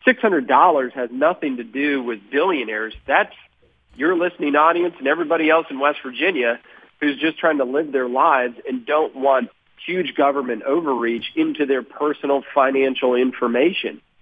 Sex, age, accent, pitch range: male, 40-59, American, 125-155 Hz